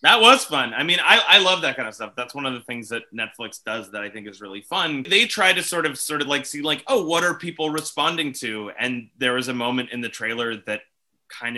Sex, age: male, 30-49